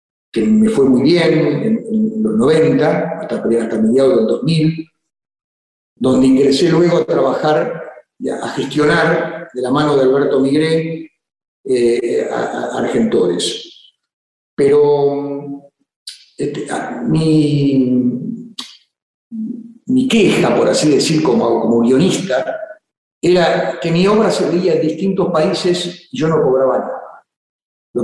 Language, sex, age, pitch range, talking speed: Spanish, male, 50-69, 135-195 Hz, 120 wpm